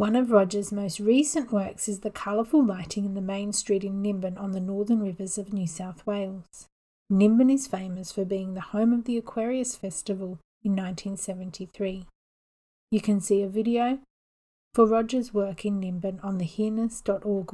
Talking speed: 170 wpm